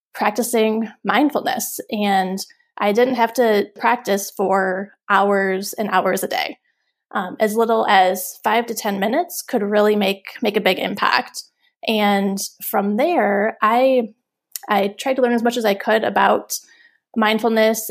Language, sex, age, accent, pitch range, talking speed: English, female, 20-39, American, 195-245 Hz, 145 wpm